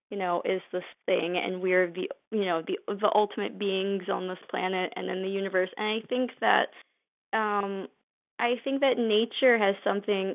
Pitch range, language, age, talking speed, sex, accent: 185-220 Hz, English, 20-39, 185 wpm, female, American